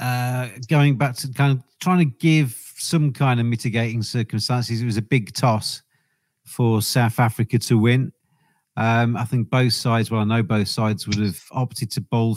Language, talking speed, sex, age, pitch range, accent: English, 190 wpm, male, 40-59, 115-130 Hz, British